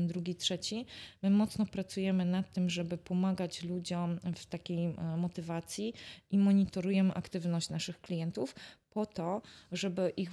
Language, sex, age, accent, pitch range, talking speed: Polish, female, 20-39, native, 180-200 Hz, 135 wpm